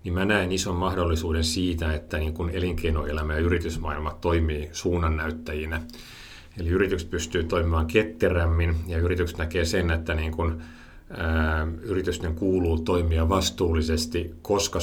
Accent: native